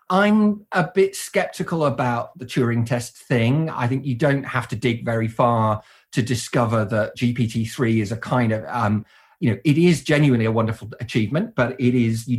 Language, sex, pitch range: English, male, 115-145 Hz